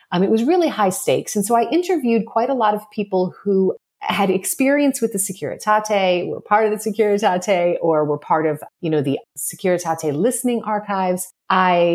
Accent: American